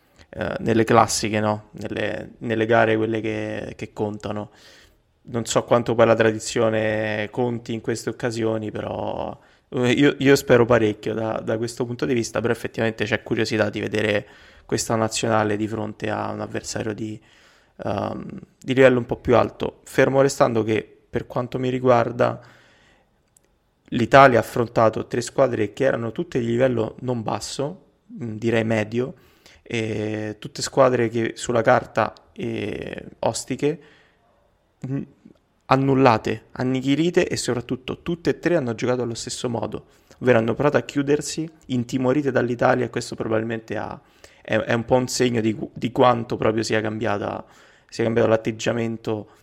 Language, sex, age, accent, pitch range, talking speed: Italian, male, 20-39, native, 110-125 Hz, 140 wpm